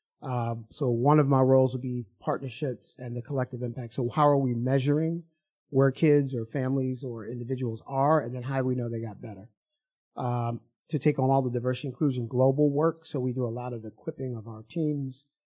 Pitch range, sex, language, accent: 115-135 Hz, male, English, American